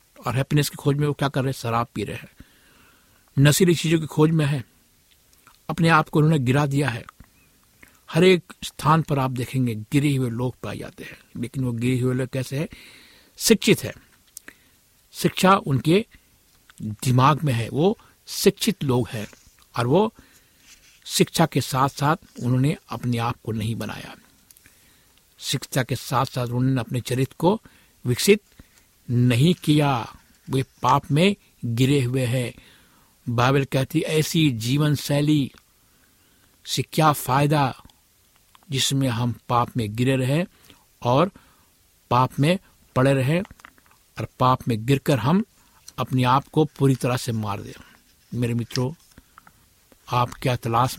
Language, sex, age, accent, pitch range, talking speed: Hindi, male, 60-79, native, 125-150 Hz, 145 wpm